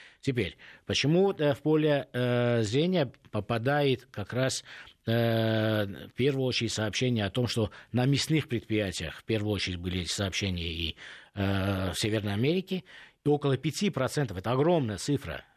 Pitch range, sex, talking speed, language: 110-145 Hz, male, 140 wpm, Russian